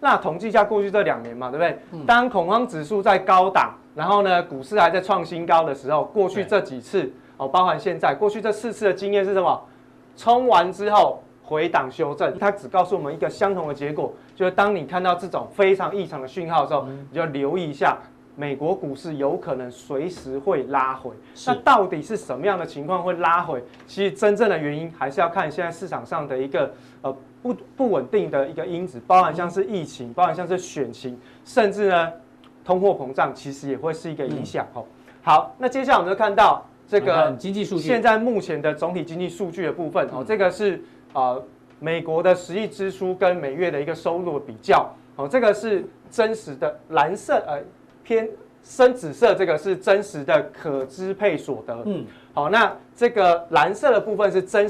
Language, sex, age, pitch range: Chinese, male, 20-39, 150-205 Hz